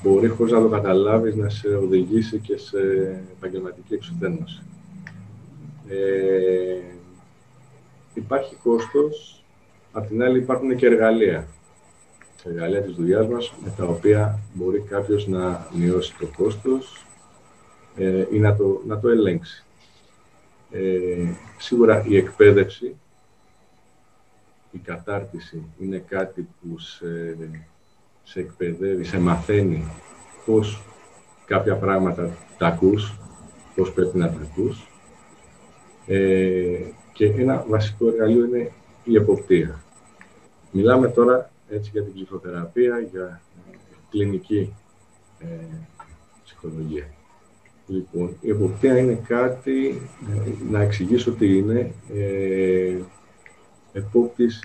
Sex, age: male, 40-59